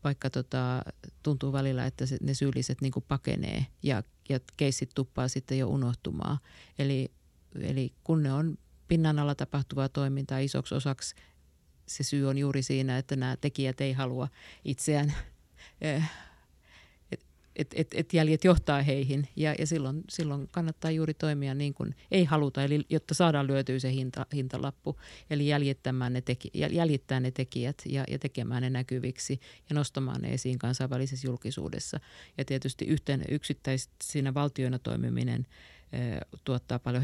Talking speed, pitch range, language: 140 wpm, 130-150 Hz, Finnish